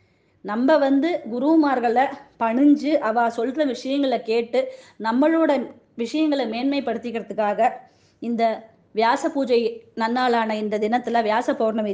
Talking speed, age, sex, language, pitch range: 95 wpm, 20-39, female, Tamil, 225-280 Hz